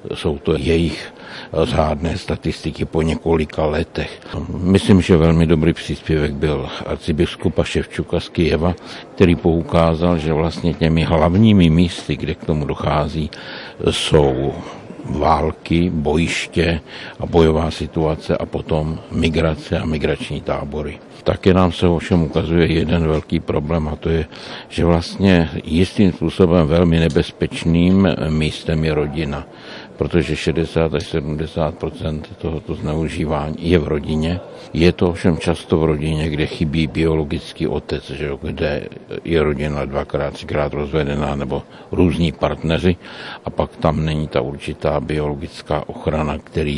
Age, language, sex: 60-79, Czech, male